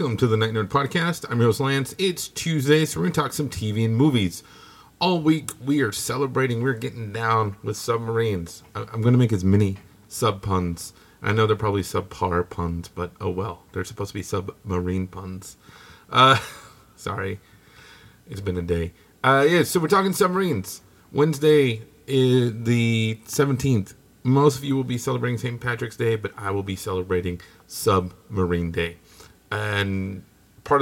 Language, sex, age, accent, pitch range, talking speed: English, male, 30-49, American, 100-135 Hz, 170 wpm